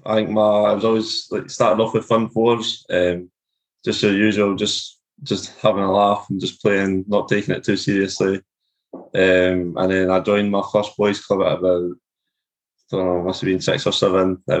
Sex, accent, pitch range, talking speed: male, British, 95-110 Hz, 215 wpm